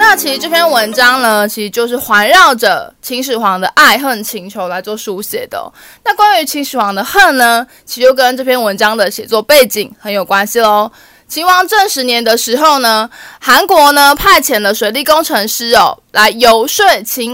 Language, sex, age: Chinese, female, 20-39